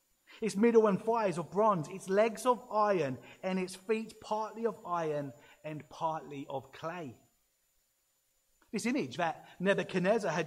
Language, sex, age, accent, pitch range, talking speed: English, male, 30-49, British, 165-220 Hz, 145 wpm